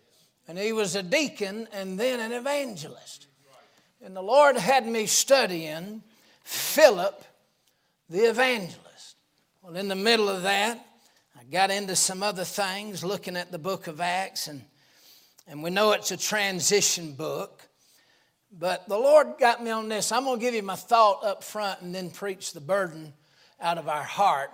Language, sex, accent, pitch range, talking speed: English, male, American, 170-225 Hz, 165 wpm